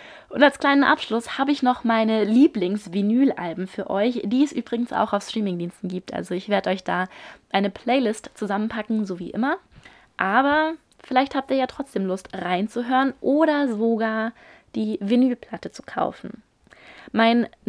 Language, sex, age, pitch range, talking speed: German, female, 20-39, 195-250 Hz, 150 wpm